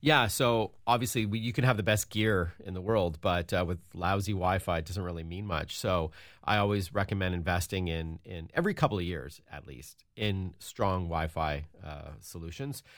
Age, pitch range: 40-59, 85-110 Hz